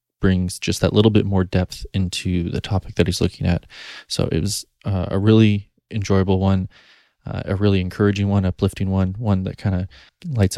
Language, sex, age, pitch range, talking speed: English, male, 20-39, 95-105 Hz, 195 wpm